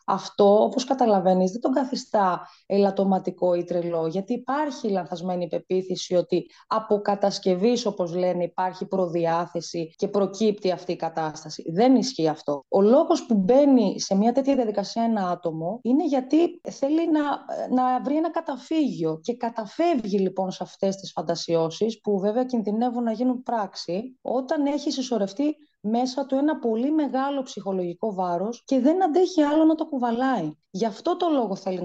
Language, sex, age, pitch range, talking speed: Greek, female, 20-39, 180-265 Hz, 155 wpm